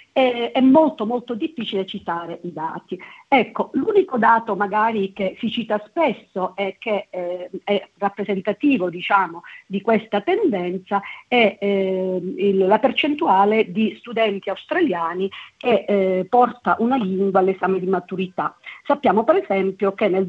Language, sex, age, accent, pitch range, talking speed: Italian, female, 50-69, native, 195-235 Hz, 125 wpm